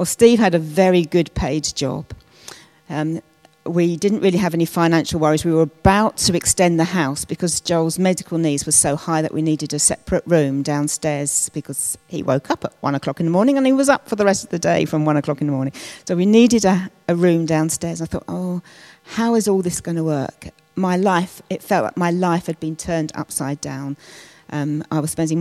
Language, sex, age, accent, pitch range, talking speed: English, female, 40-59, British, 155-175 Hz, 225 wpm